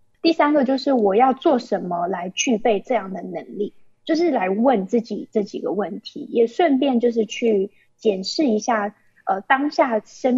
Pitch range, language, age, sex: 210-280 Hz, Chinese, 20-39, female